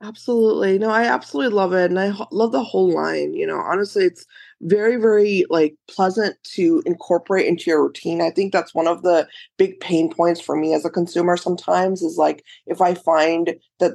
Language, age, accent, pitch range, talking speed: English, 20-39, American, 165-205 Hz, 200 wpm